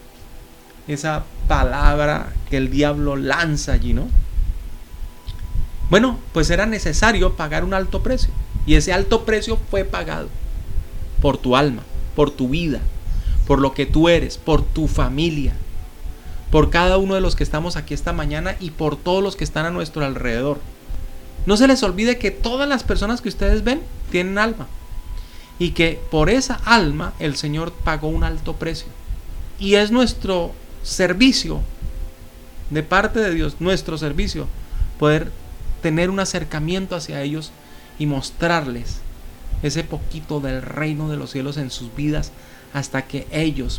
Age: 30-49